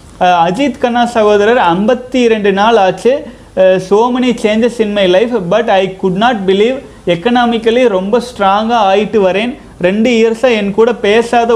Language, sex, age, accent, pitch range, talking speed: Tamil, male, 30-49, native, 195-235 Hz, 140 wpm